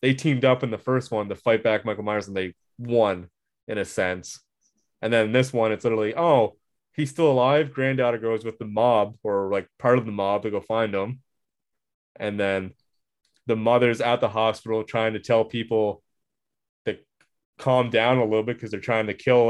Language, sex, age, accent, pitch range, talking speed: English, male, 20-39, American, 105-125 Hz, 200 wpm